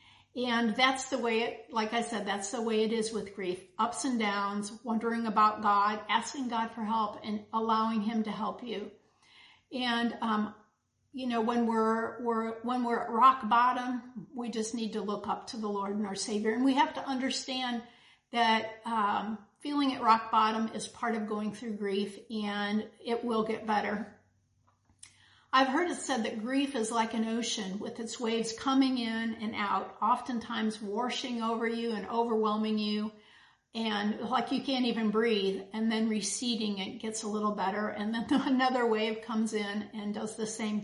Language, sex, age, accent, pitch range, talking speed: English, female, 50-69, American, 210-240 Hz, 185 wpm